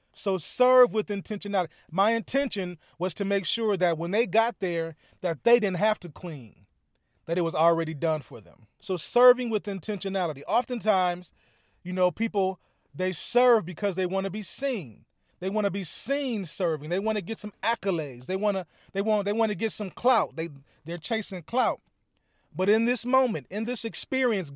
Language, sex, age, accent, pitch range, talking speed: English, male, 30-49, American, 170-225 Hz, 185 wpm